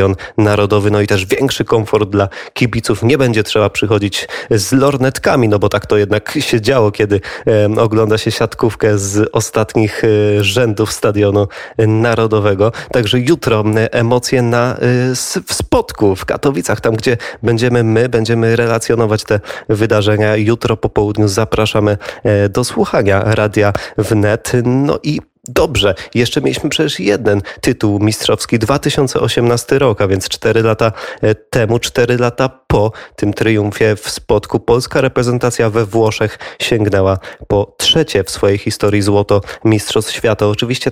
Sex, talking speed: male, 130 wpm